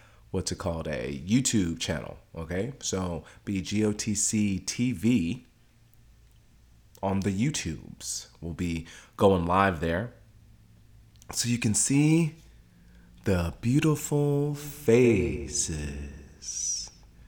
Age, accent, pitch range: 30-49, American, 80-115 Hz